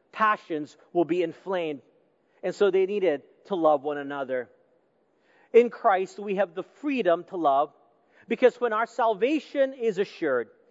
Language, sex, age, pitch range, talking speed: English, male, 40-59, 185-250 Hz, 145 wpm